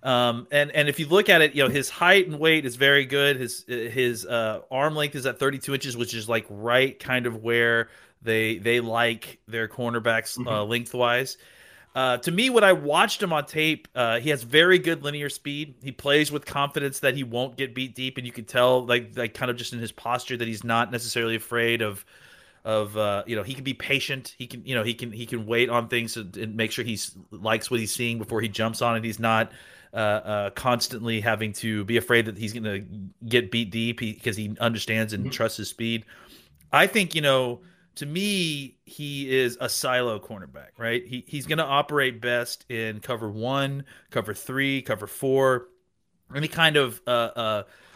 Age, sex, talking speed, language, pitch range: 30-49, male, 210 wpm, English, 115-140 Hz